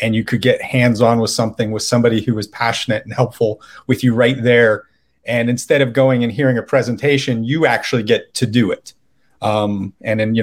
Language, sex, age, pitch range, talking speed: English, male, 30-49, 110-125 Hz, 215 wpm